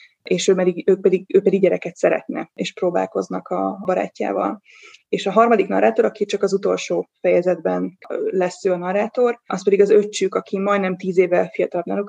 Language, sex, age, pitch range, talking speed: Hungarian, female, 20-39, 180-210 Hz, 180 wpm